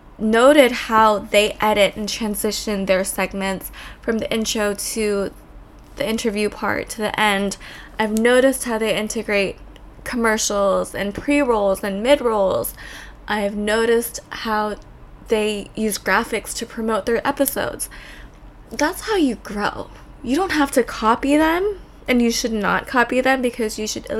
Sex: female